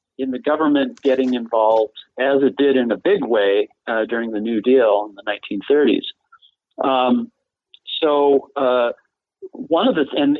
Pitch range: 120-150 Hz